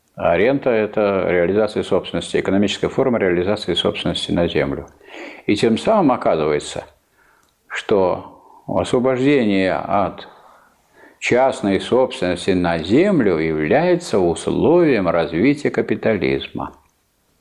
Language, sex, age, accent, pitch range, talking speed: Russian, male, 50-69, native, 95-135 Hz, 85 wpm